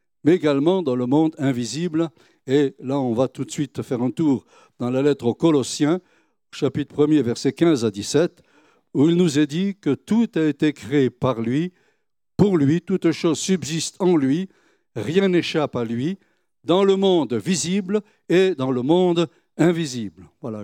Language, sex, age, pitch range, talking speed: French, male, 60-79, 130-170 Hz, 175 wpm